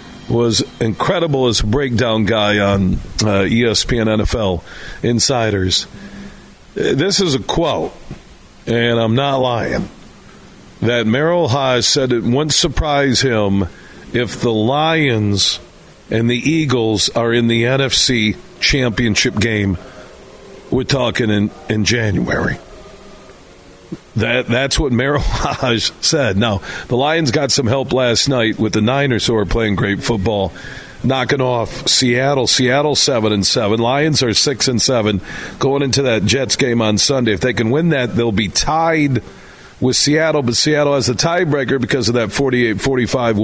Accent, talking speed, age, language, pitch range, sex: American, 145 wpm, 50-69, English, 110-135 Hz, male